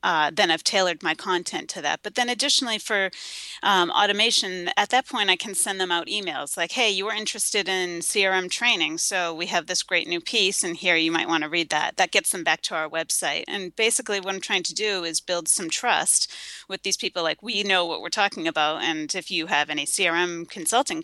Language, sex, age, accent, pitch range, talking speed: English, female, 30-49, American, 165-205 Hz, 230 wpm